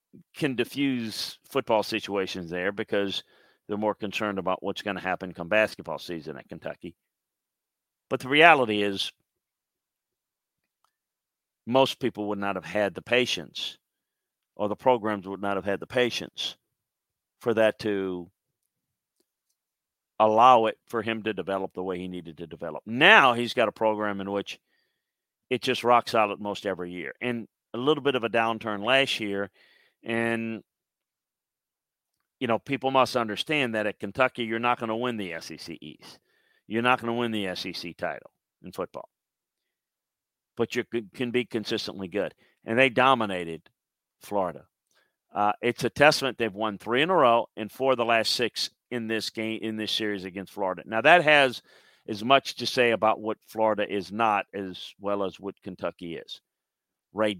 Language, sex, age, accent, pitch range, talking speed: English, male, 50-69, American, 100-120 Hz, 165 wpm